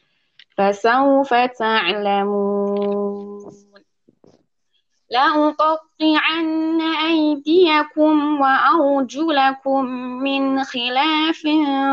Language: English